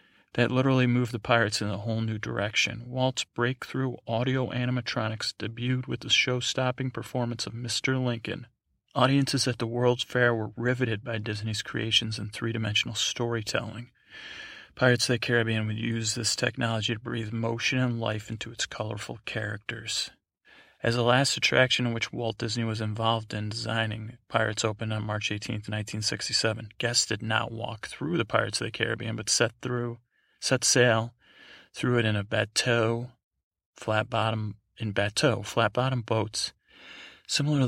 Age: 30-49